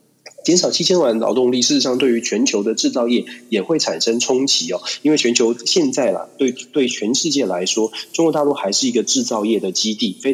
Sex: male